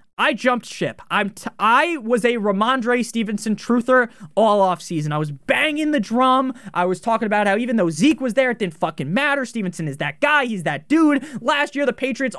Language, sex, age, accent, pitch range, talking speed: English, male, 20-39, American, 190-255 Hz, 200 wpm